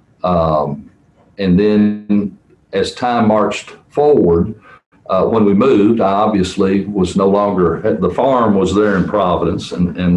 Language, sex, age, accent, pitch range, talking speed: English, male, 60-79, American, 95-120 Hz, 140 wpm